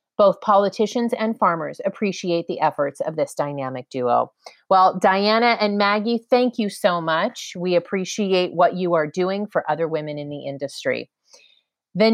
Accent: American